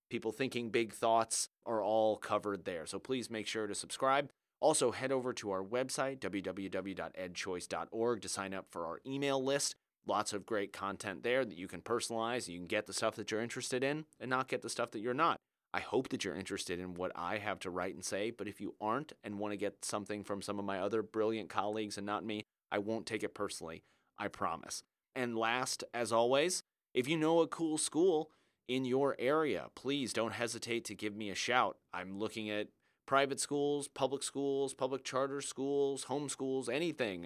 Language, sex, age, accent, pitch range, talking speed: English, male, 30-49, American, 100-130 Hz, 205 wpm